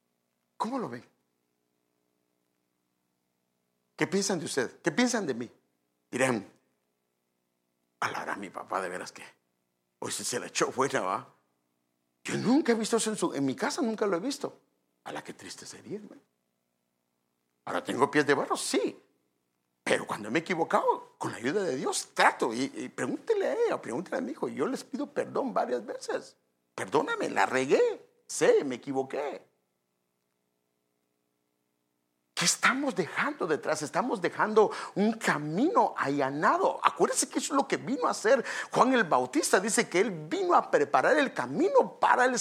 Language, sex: English, male